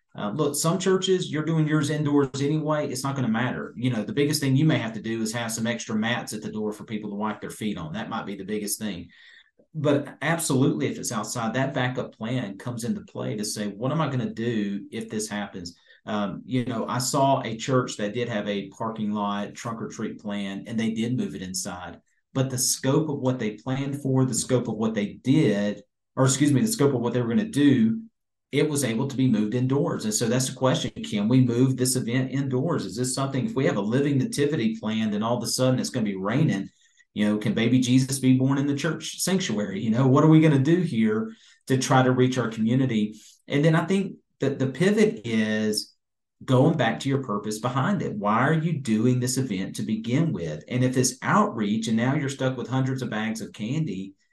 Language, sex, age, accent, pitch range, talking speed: English, male, 40-59, American, 110-140 Hz, 240 wpm